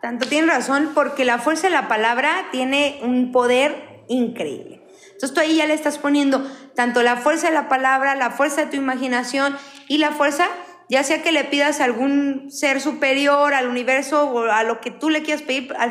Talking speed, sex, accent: 205 wpm, female, Mexican